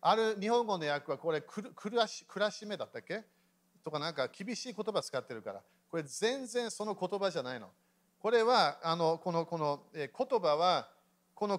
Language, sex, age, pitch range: Japanese, male, 40-59, 165-230 Hz